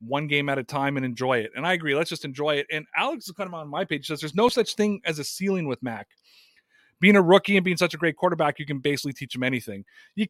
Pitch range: 150-210 Hz